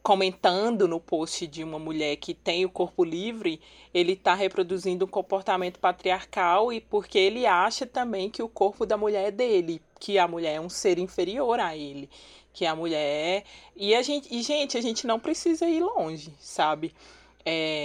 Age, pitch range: 20-39, 165-225 Hz